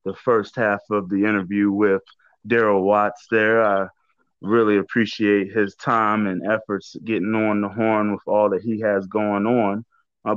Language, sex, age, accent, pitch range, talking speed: English, male, 20-39, American, 100-115 Hz, 170 wpm